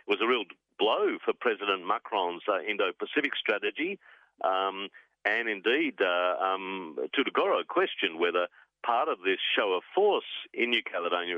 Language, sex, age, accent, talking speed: English, male, 50-69, Australian, 135 wpm